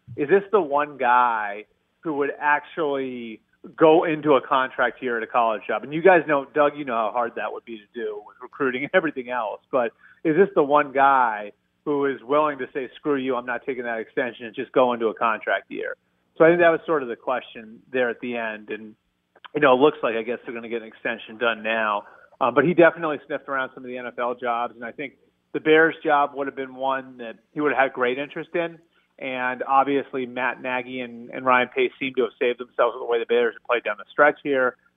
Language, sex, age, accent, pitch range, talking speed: English, male, 30-49, American, 120-150 Hz, 245 wpm